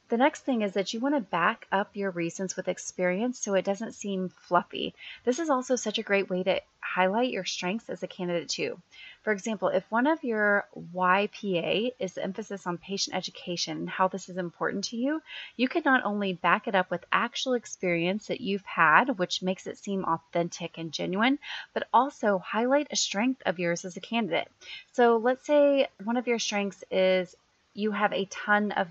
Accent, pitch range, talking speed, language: American, 180-225 Hz, 200 wpm, English